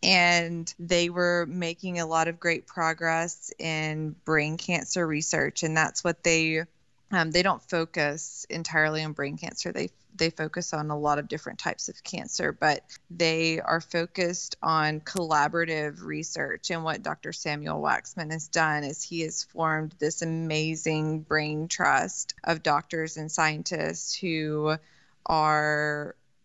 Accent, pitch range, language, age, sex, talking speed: American, 155-175 Hz, English, 20-39, female, 145 wpm